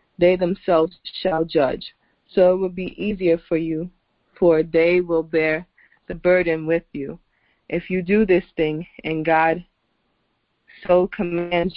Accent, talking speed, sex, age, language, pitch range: American, 145 wpm, female, 20-39, English, 160-180 Hz